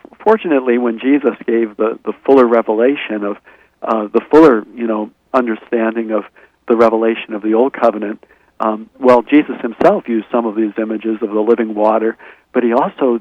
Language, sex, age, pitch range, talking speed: English, male, 50-69, 110-125 Hz, 175 wpm